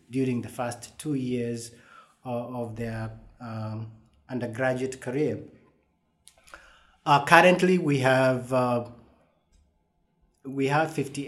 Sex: male